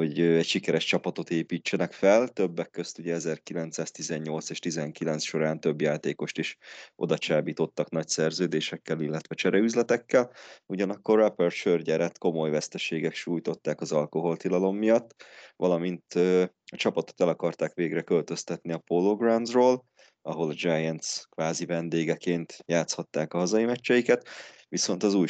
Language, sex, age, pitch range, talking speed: Hungarian, male, 20-39, 80-90 Hz, 120 wpm